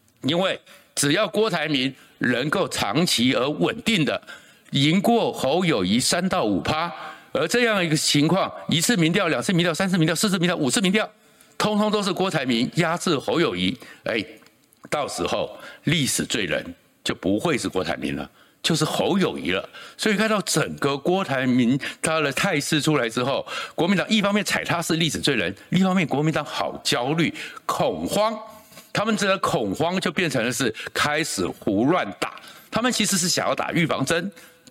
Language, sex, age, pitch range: Chinese, male, 60-79, 160-215 Hz